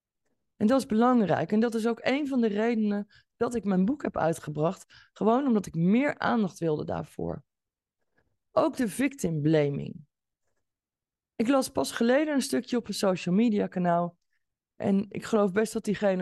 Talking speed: 165 wpm